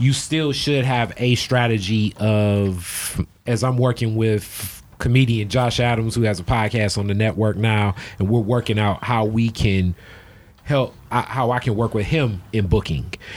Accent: American